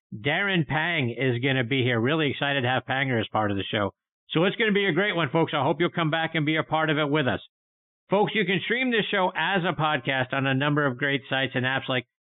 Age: 50-69